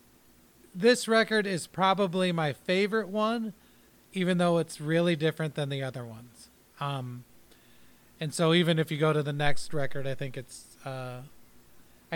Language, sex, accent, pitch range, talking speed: English, male, American, 140-175 Hz, 155 wpm